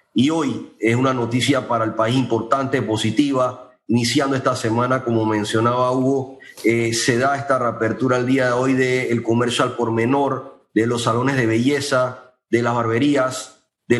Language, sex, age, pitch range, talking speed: Spanish, male, 30-49, 125-150 Hz, 165 wpm